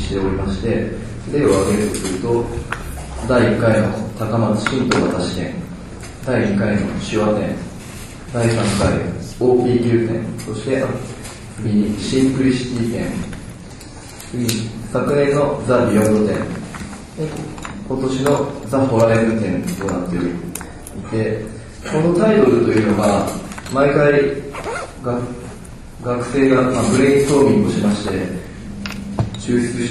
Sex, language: male, Japanese